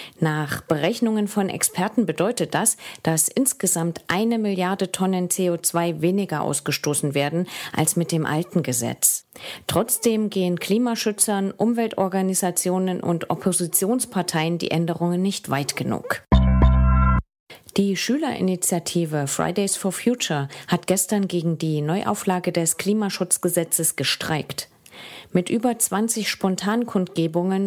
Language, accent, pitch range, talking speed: English, German, 165-205 Hz, 105 wpm